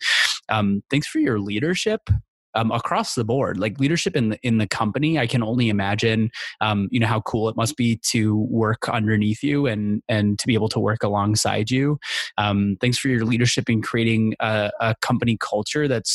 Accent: American